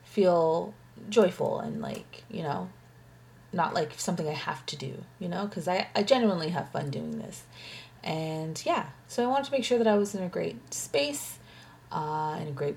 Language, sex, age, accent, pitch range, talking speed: English, female, 30-49, American, 170-255 Hz, 195 wpm